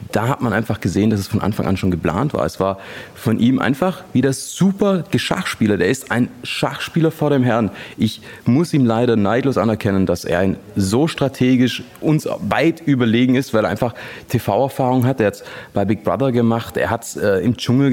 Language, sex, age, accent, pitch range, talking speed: German, male, 30-49, German, 100-130 Hz, 210 wpm